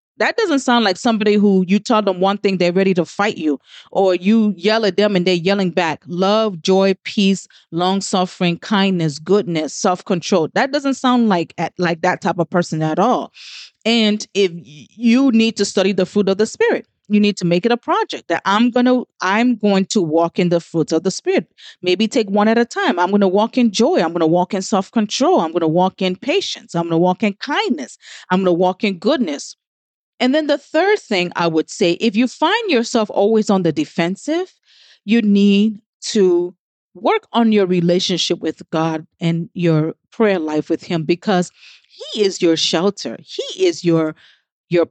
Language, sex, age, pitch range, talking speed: English, female, 30-49, 175-225 Hz, 200 wpm